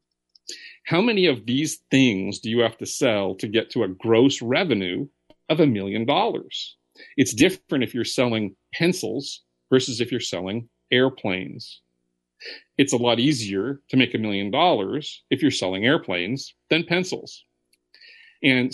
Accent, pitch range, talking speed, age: American, 100-130 Hz, 150 wpm, 40-59